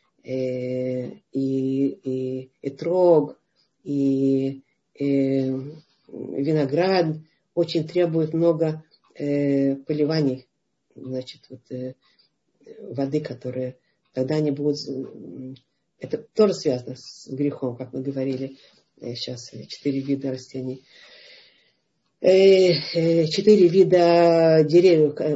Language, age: Russian, 50-69